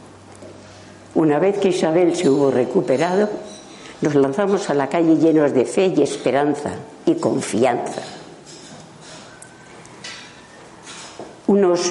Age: 50-69